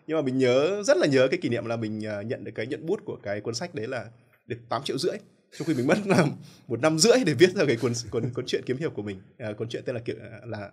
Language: Vietnamese